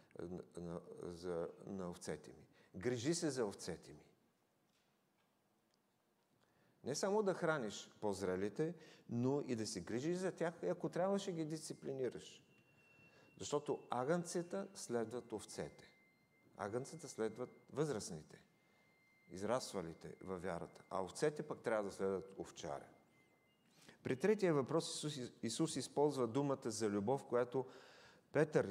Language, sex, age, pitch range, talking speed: English, male, 50-69, 100-165 Hz, 115 wpm